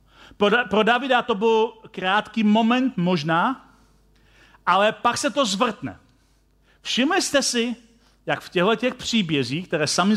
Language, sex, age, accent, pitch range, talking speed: Czech, male, 40-59, native, 160-225 Hz, 130 wpm